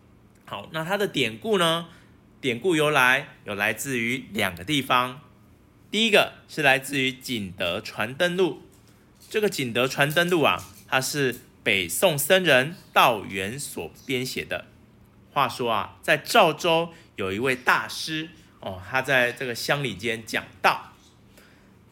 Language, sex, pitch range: Chinese, male, 115-165 Hz